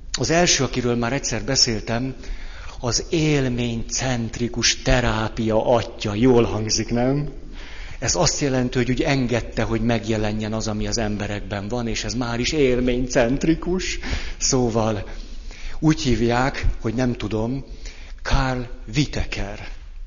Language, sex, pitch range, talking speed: Hungarian, male, 105-125 Hz, 115 wpm